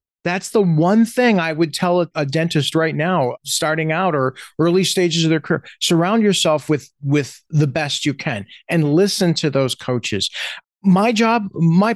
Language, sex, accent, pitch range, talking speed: English, male, American, 135-180 Hz, 175 wpm